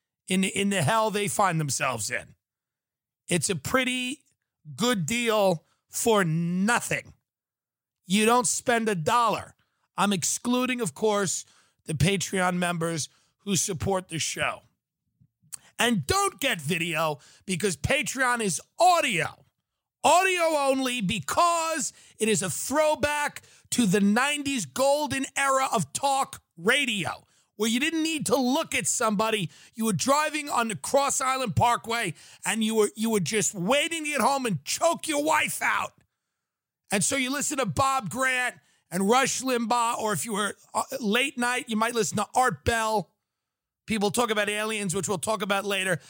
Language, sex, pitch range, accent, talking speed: English, male, 180-260 Hz, American, 155 wpm